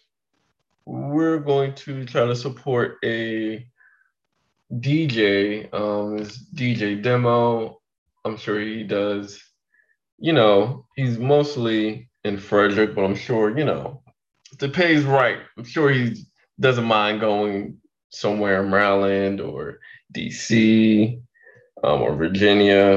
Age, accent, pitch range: 20-39, American, 100-120 Hz